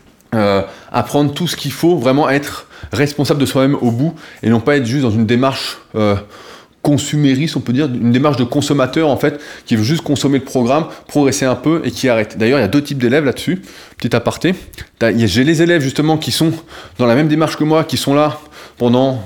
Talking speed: 220 wpm